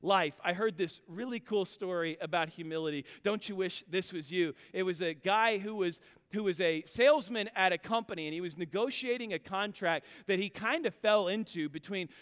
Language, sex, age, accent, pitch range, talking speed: English, male, 40-59, American, 175-235 Hz, 195 wpm